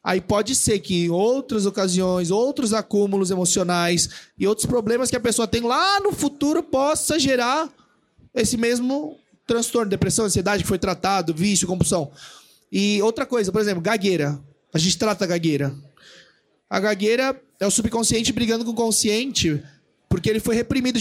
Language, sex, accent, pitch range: Portuguese, male, Brazilian, 190-235 Hz